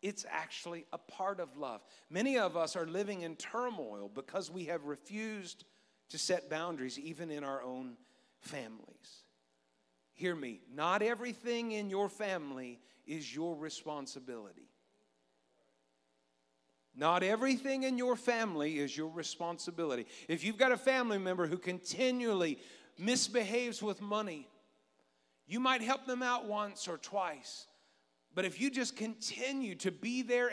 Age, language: 50-69, English